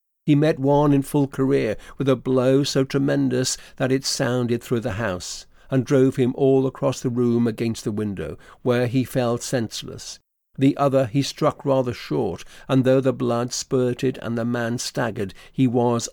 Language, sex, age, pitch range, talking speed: English, male, 50-69, 115-140 Hz, 180 wpm